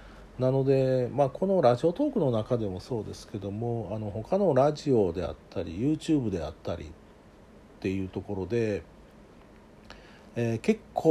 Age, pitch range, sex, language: 50-69, 100-140 Hz, male, Japanese